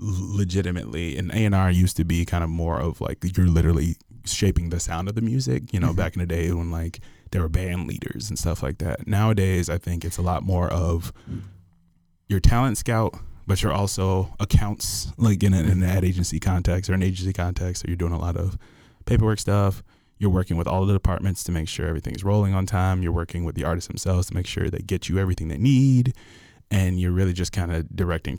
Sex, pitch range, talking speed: male, 85-95 Hz, 225 wpm